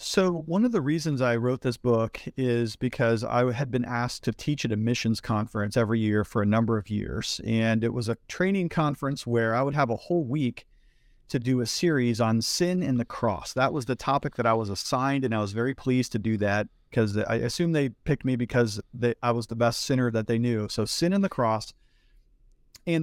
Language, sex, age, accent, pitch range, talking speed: English, male, 40-59, American, 115-140 Hz, 225 wpm